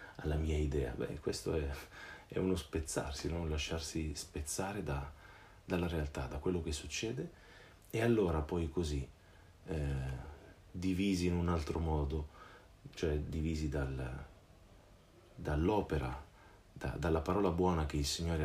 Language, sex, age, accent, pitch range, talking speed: Italian, male, 40-59, native, 75-85 Hz, 130 wpm